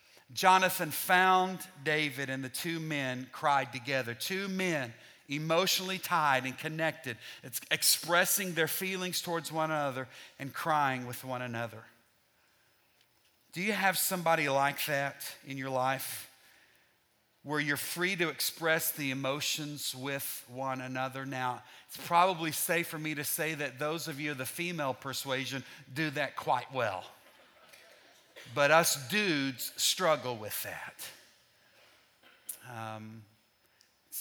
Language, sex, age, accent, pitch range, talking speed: English, male, 40-59, American, 130-160 Hz, 130 wpm